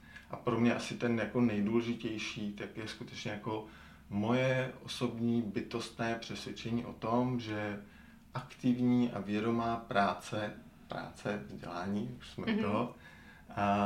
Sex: male